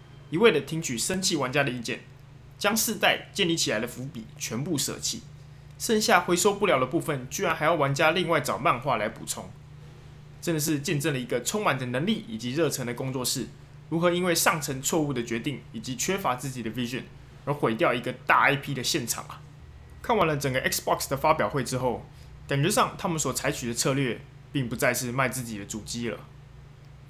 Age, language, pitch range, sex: 20-39, Chinese, 130-160 Hz, male